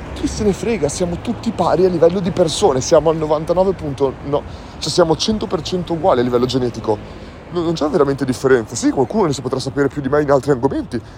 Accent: native